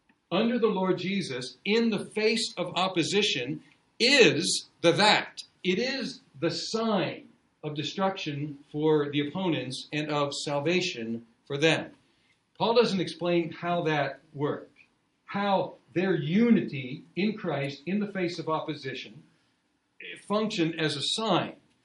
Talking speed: 125 wpm